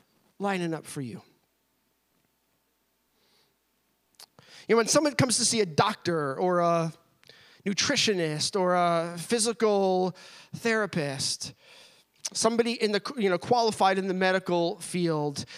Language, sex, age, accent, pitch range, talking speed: English, male, 30-49, American, 180-240 Hz, 115 wpm